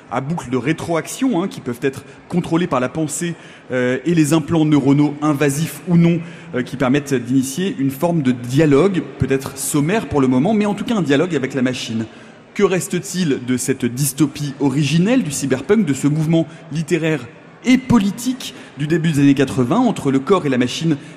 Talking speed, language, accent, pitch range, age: 190 wpm, French, French, 135-170 Hz, 30-49